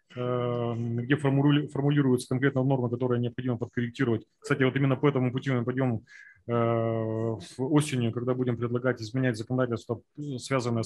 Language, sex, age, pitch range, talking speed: Russian, male, 30-49, 115-140 Hz, 140 wpm